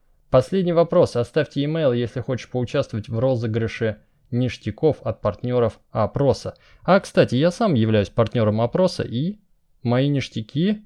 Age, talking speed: 20-39, 125 wpm